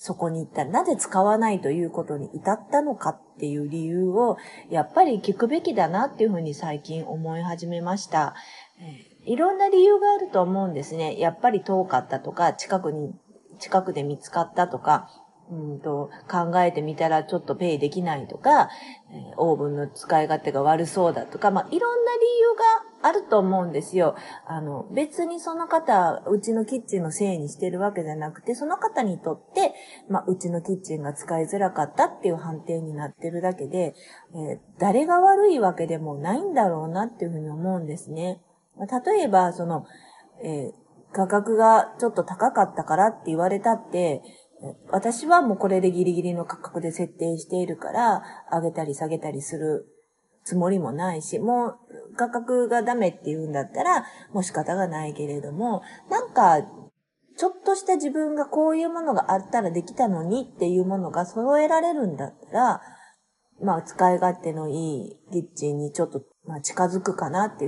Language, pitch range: Japanese, 160-225 Hz